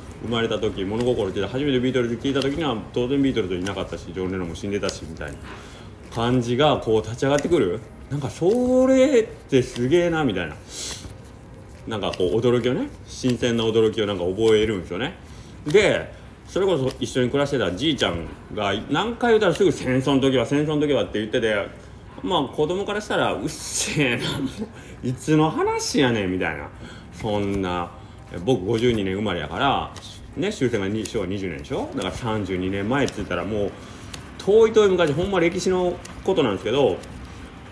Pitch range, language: 95-140 Hz, Japanese